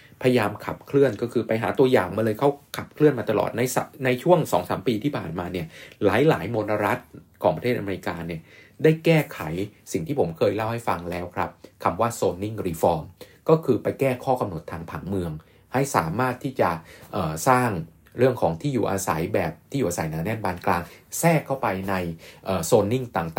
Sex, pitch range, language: male, 95-125 Hz, Thai